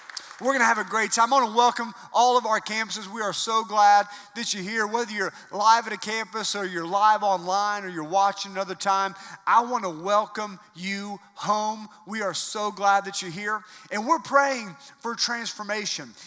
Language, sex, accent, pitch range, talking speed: English, male, American, 195-230 Hz, 205 wpm